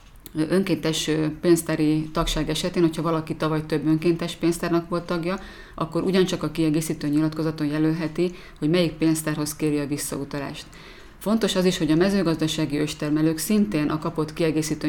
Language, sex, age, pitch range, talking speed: Hungarian, female, 30-49, 150-165 Hz, 140 wpm